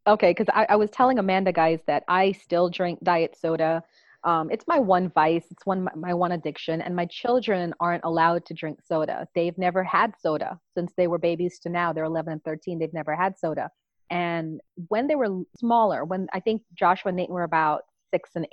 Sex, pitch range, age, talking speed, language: female, 175-225 Hz, 30-49, 210 wpm, English